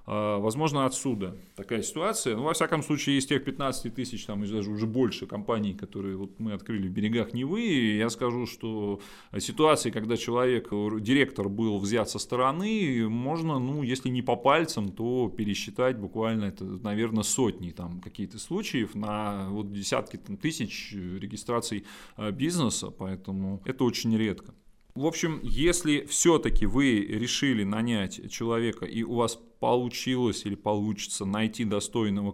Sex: male